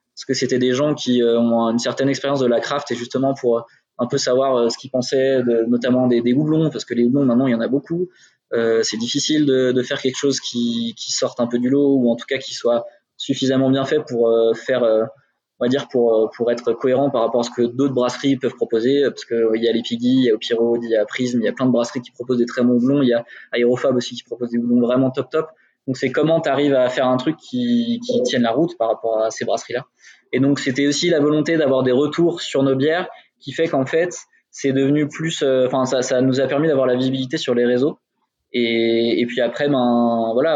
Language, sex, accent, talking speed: French, male, French, 260 wpm